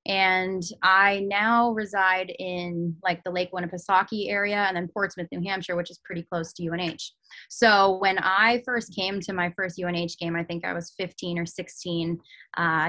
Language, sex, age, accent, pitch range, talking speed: English, female, 20-39, American, 175-200 Hz, 180 wpm